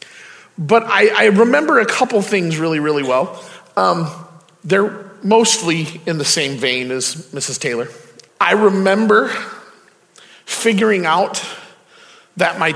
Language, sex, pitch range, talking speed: English, male, 150-200 Hz, 120 wpm